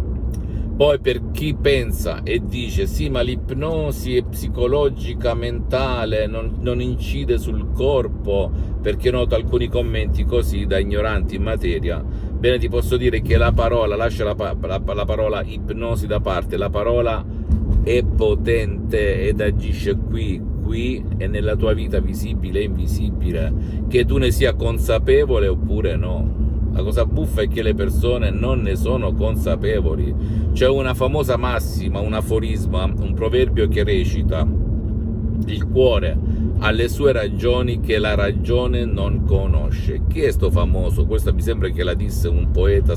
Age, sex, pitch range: 50-69, male, 80-105 Hz